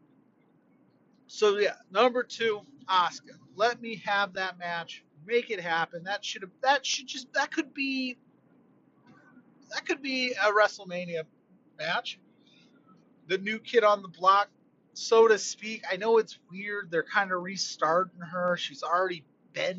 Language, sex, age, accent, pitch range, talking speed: English, male, 30-49, American, 185-250 Hz, 150 wpm